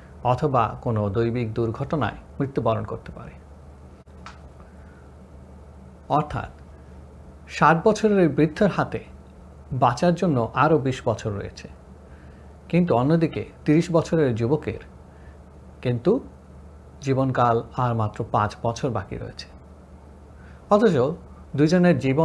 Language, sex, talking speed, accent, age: Bengali, male, 90 wpm, native, 50-69